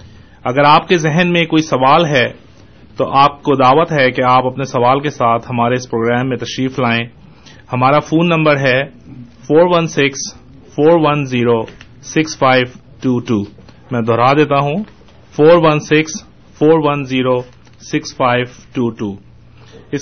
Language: Urdu